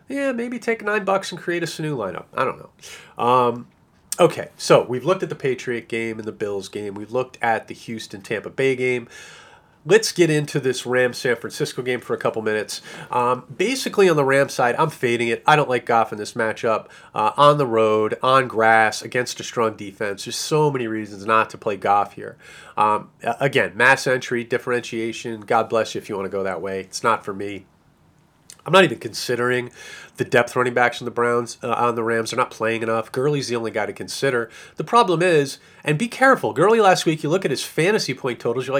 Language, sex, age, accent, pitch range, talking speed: English, male, 30-49, American, 115-155 Hz, 215 wpm